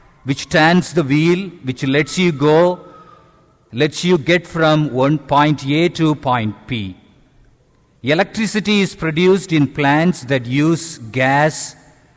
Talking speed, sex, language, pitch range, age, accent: 130 wpm, male, English, 130-175 Hz, 50-69, Indian